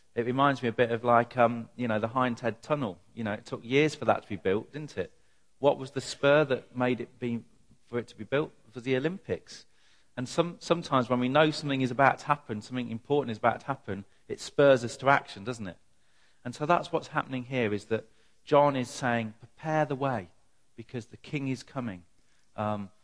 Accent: British